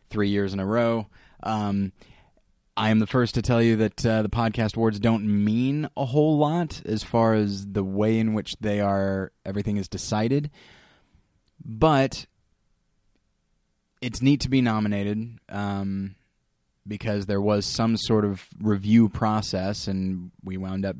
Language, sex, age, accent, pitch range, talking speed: English, male, 20-39, American, 100-115 Hz, 155 wpm